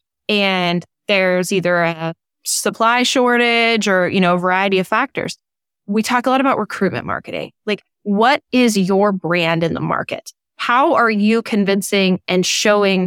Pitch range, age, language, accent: 195-235 Hz, 20-39, English, American